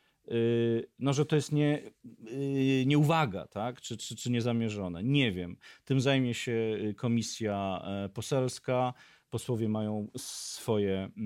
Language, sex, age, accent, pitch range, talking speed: Polish, male, 40-59, native, 115-150 Hz, 110 wpm